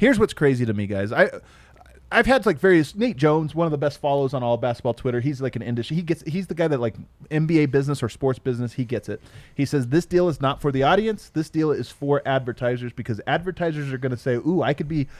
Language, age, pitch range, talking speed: English, 30-49, 125-170 Hz, 255 wpm